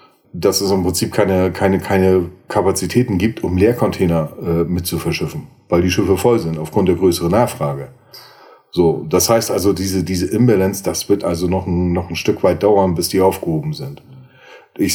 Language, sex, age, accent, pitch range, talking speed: German, male, 40-59, German, 90-110 Hz, 185 wpm